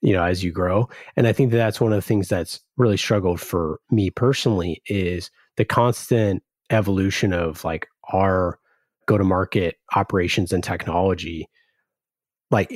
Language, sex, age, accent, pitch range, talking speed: English, male, 30-49, American, 90-115 Hz, 150 wpm